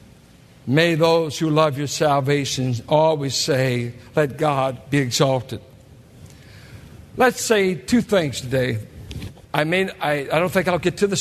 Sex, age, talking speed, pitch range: male, 60-79, 150 wpm, 130-195 Hz